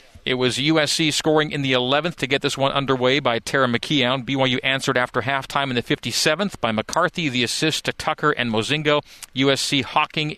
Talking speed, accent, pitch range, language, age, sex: 185 wpm, American, 115-145 Hz, English, 40-59, male